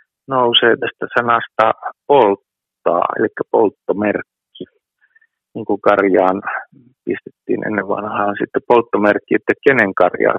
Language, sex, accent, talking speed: Finnish, male, native, 100 wpm